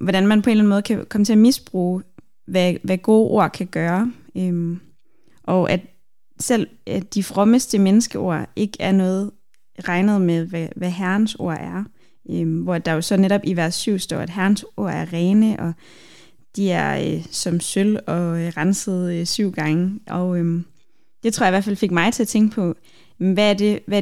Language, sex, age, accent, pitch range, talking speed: Danish, female, 20-39, native, 170-205 Hz, 200 wpm